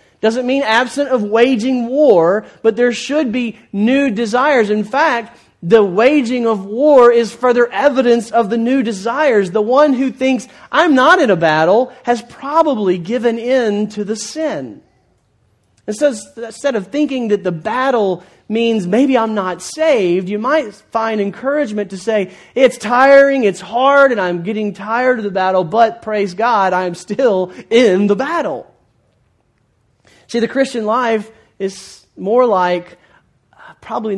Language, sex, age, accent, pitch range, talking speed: English, male, 40-59, American, 195-250 Hz, 150 wpm